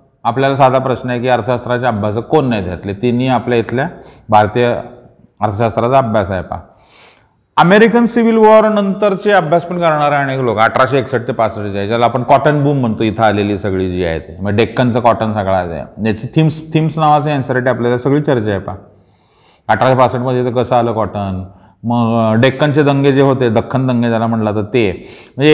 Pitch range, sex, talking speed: 110-145 Hz, male, 170 wpm